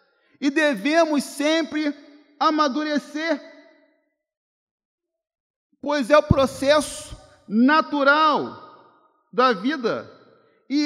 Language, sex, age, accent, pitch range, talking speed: Portuguese, male, 40-59, Brazilian, 230-305 Hz, 65 wpm